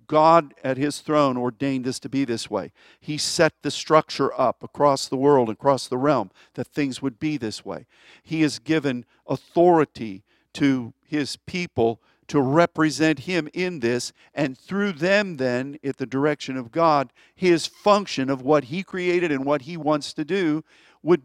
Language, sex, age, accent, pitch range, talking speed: English, male, 50-69, American, 140-180 Hz, 175 wpm